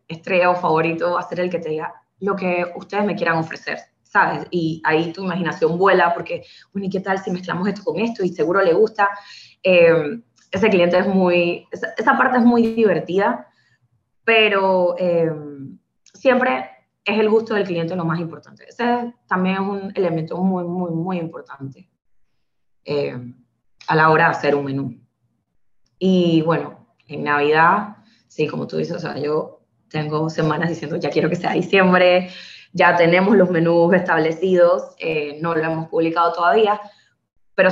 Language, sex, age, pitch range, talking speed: Spanish, female, 20-39, 160-195 Hz, 165 wpm